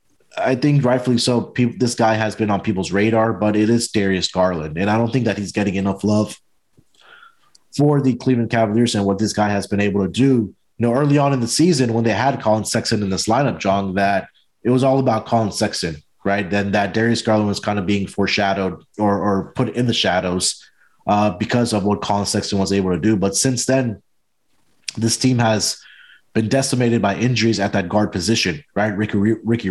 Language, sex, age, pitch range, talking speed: English, male, 30-49, 100-120 Hz, 210 wpm